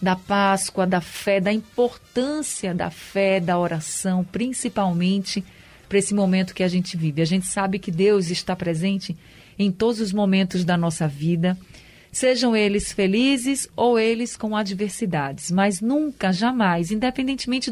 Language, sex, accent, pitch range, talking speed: Portuguese, female, Brazilian, 180-215 Hz, 145 wpm